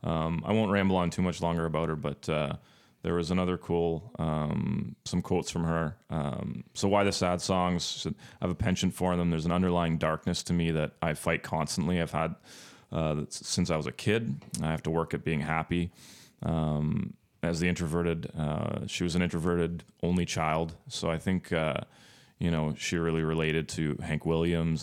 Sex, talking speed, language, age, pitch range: male, 195 wpm, English, 30-49, 80-90 Hz